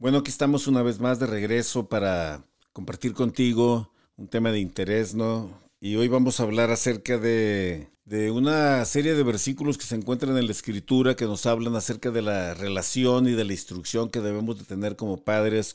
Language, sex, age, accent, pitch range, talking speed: Spanish, male, 50-69, Mexican, 110-135 Hz, 195 wpm